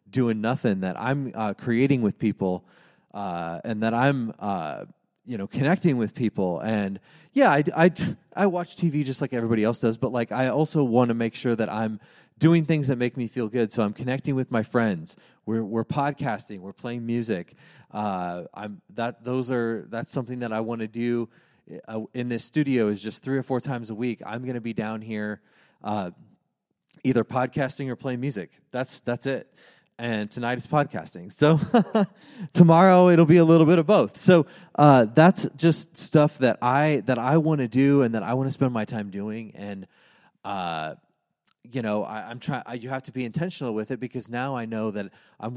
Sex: male